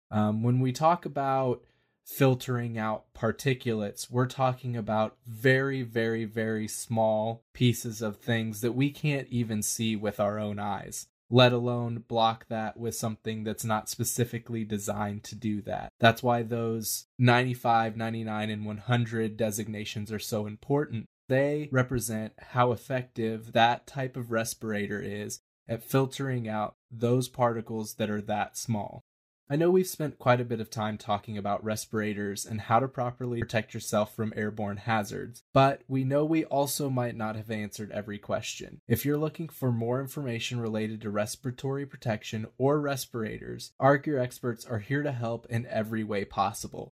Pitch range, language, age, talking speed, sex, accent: 110-125 Hz, English, 20-39, 160 wpm, male, American